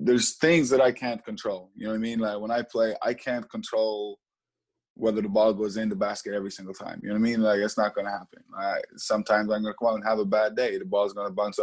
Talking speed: 275 wpm